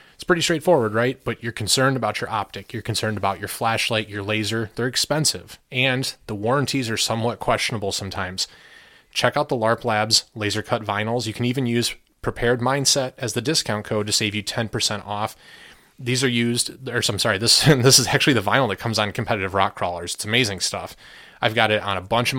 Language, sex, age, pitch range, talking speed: English, male, 30-49, 105-125 Hz, 210 wpm